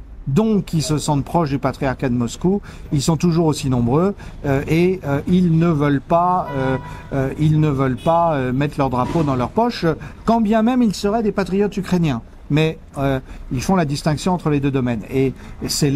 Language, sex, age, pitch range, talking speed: French, male, 50-69, 130-165 Hz, 205 wpm